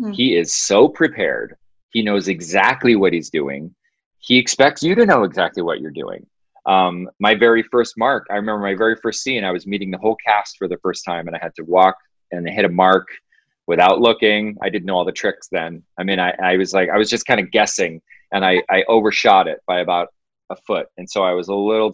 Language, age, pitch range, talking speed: English, 30-49, 95-120 Hz, 235 wpm